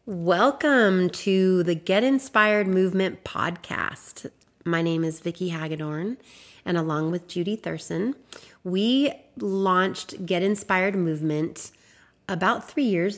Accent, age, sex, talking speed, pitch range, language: American, 30-49, female, 115 wpm, 165-195 Hz, English